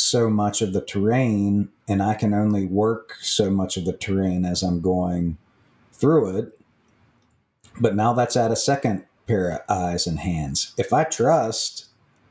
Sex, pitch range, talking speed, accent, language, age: male, 100-120 Hz, 165 wpm, American, English, 40-59